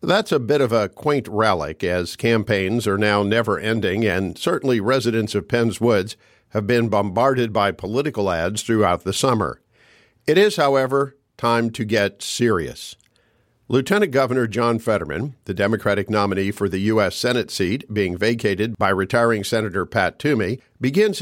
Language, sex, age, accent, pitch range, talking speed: English, male, 50-69, American, 105-125 Hz, 155 wpm